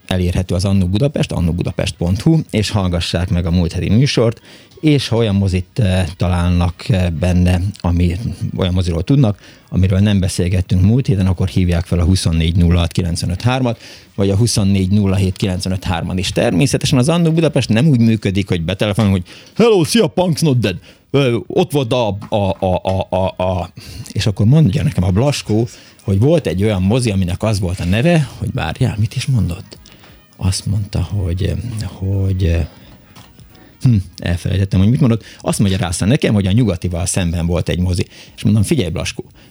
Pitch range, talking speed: 90-115 Hz, 160 wpm